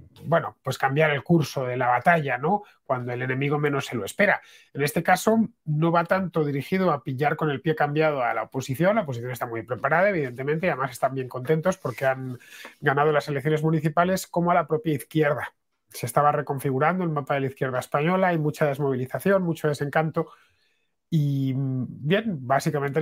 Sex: male